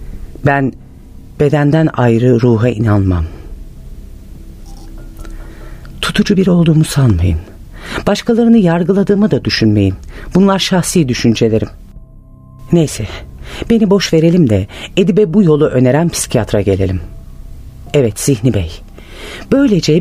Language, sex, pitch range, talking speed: Turkish, female, 95-145 Hz, 95 wpm